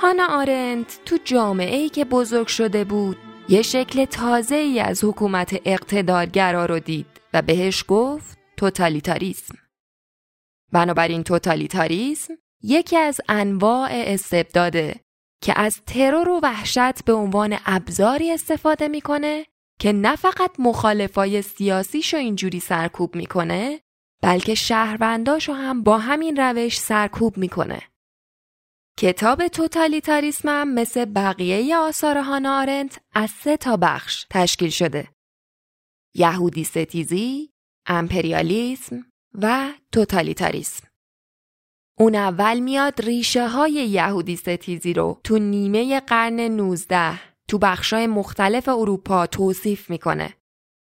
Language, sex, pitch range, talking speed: Persian, female, 185-260 Hz, 105 wpm